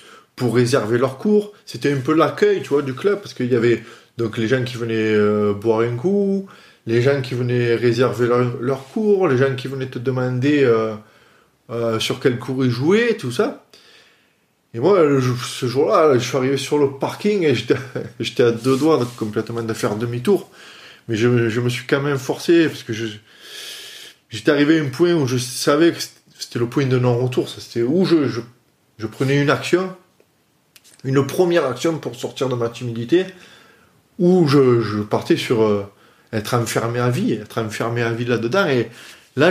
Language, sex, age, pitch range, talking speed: French, male, 20-39, 115-150 Hz, 195 wpm